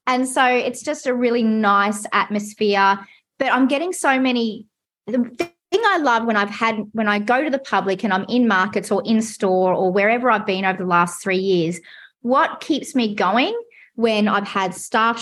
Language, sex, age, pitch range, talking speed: English, female, 30-49, 205-265 Hz, 195 wpm